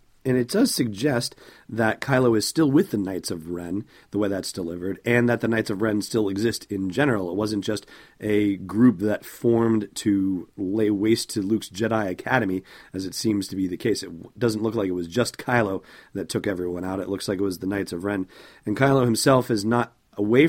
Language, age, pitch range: English, 40-59, 100-120 Hz